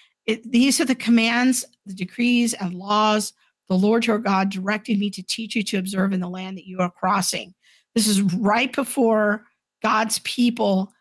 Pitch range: 195-235 Hz